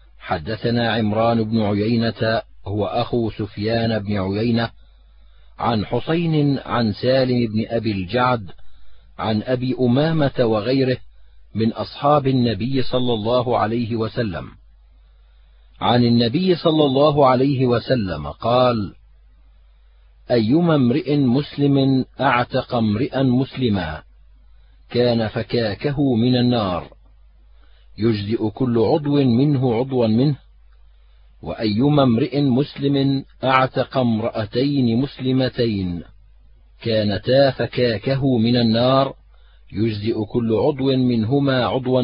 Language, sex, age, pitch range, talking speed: Arabic, male, 50-69, 100-130 Hz, 95 wpm